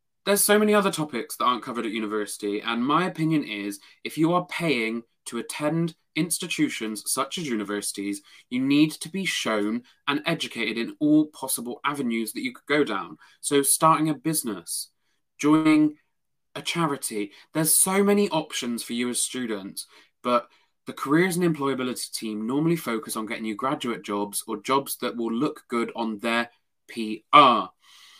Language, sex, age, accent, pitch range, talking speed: English, male, 20-39, British, 115-155 Hz, 165 wpm